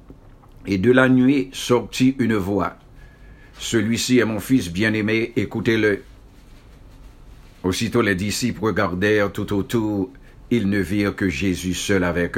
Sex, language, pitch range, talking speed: male, English, 100-130 Hz, 125 wpm